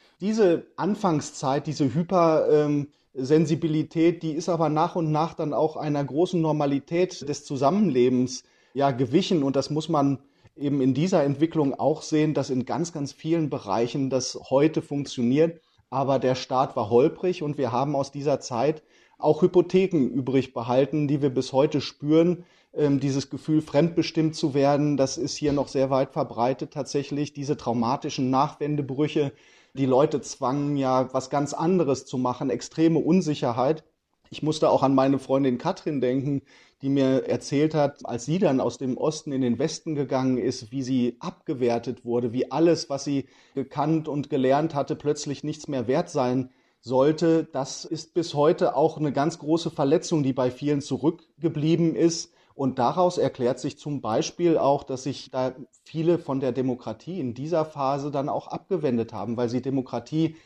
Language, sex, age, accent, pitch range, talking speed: German, male, 30-49, German, 130-160 Hz, 165 wpm